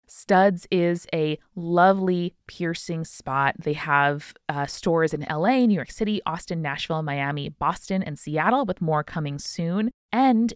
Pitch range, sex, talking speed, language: 155-210 Hz, female, 150 wpm, English